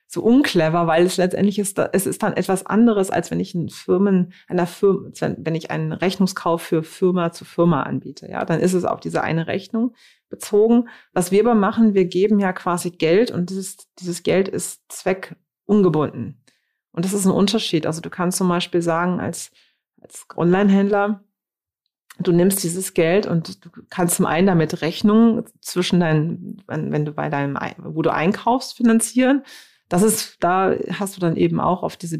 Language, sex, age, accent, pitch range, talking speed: German, female, 30-49, German, 170-195 Hz, 185 wpm